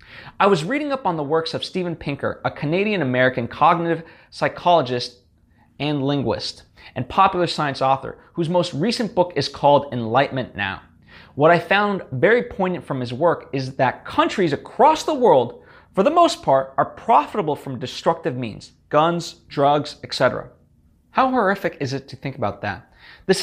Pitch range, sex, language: 130-190 Hz, male, English